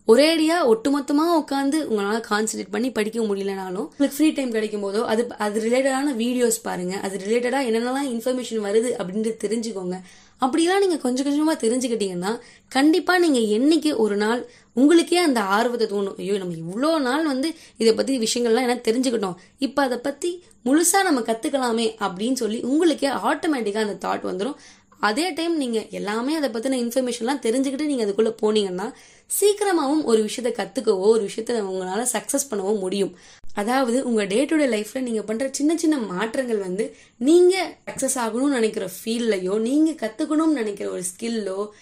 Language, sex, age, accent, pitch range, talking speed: Tamil, female, 20-39, native, 215-280 Hz, 85 wpm